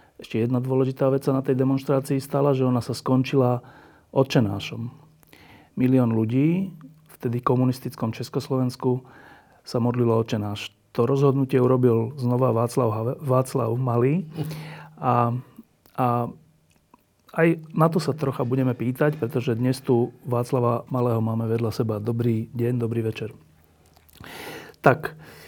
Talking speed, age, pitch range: 125 wpm, 40-59, 120-145 Hz